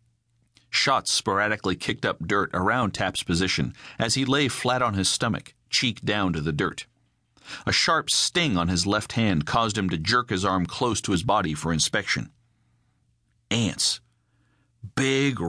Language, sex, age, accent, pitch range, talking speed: English, male, 40-59, American, 95-120 Hz, 160 wpm